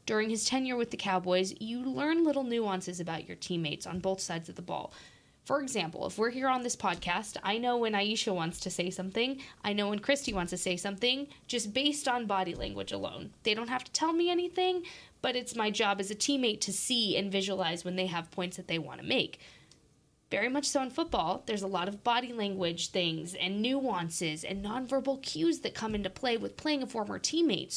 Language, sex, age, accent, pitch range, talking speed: English, female, 20-39, American, 185-255 Hz, 220 wpm